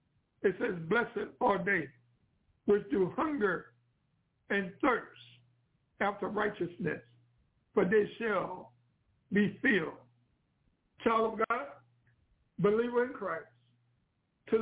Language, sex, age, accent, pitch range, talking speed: English, male, 60-79, American, 135-225 Hz, 100 wpm